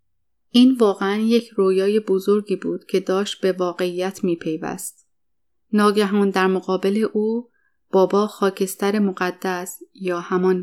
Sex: female